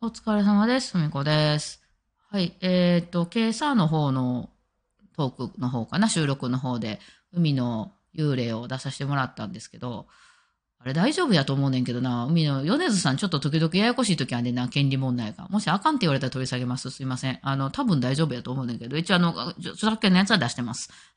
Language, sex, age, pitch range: Japanese, female, 20-39, 135-200 Hz